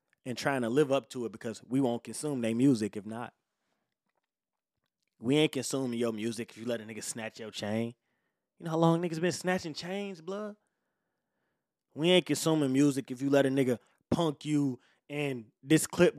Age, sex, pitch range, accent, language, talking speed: 20-39, male, 135-230 Hz, American, English, 190 wpm